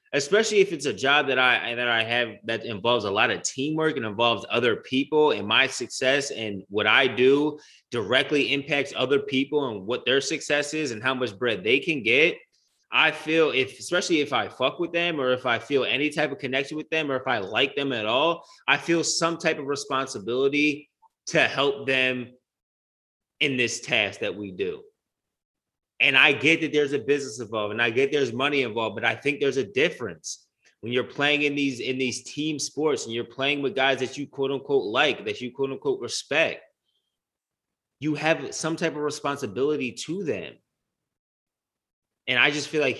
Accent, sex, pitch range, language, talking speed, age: American, male, 130-150 Hz, English, 195 wpm, 20-39